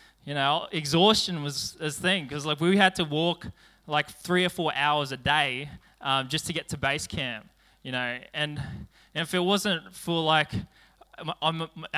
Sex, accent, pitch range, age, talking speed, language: male, Australian, 140-170 Hz, 20-39, 180 wpm, English